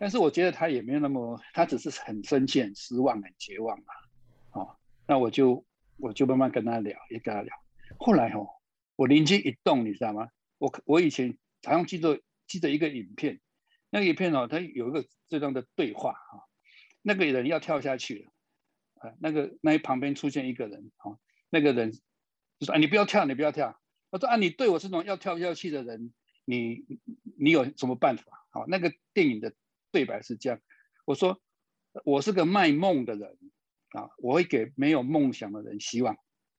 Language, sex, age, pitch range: Chinese, male, 60-79, 125-175 Hz